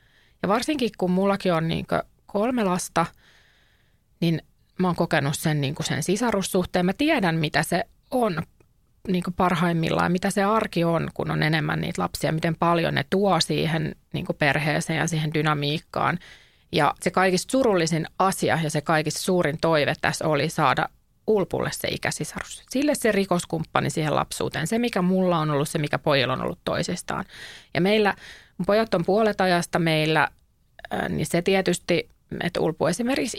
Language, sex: Finnish, female